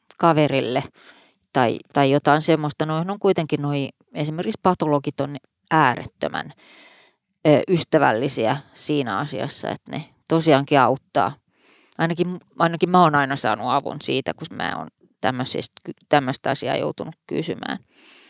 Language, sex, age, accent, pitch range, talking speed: Finnish, female, 30-49, native, 150-185 Hz, 120 wpm